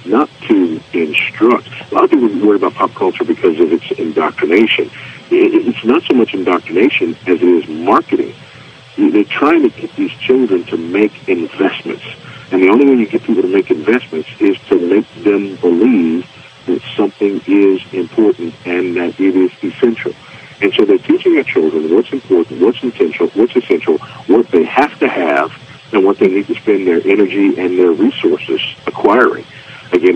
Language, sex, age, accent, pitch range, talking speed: English, male, 50-69, American, 320-375 Hz, 175 wpm